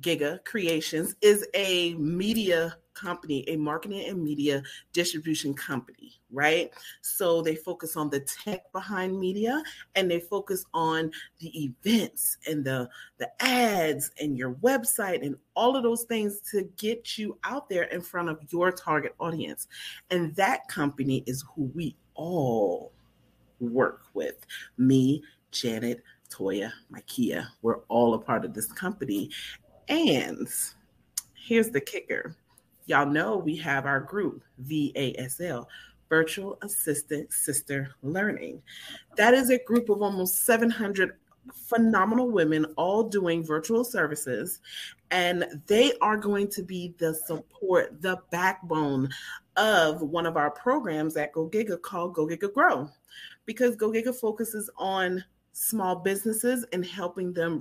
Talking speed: 130 wpm